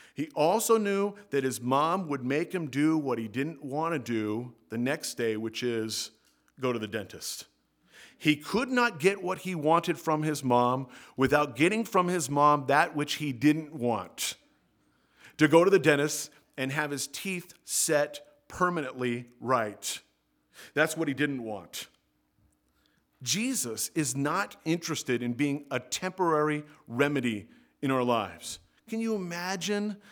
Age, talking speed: 40-59, 155 wpm